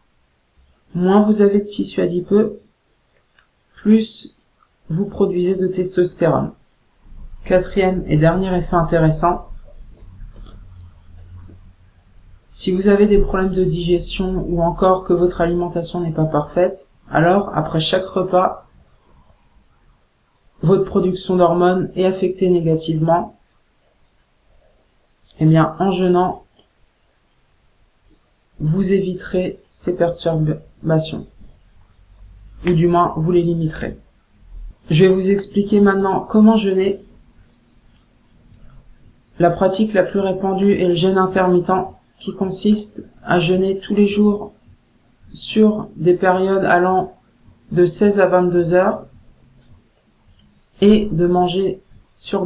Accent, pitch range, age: French, 155-190 Hz, 40-59